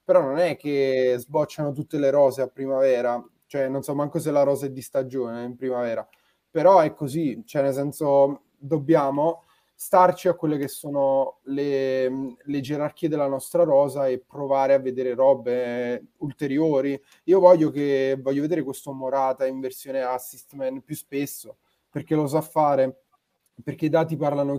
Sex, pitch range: male, 130-150 Hz